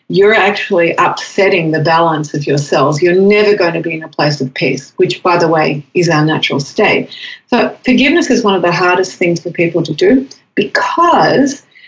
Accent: Australian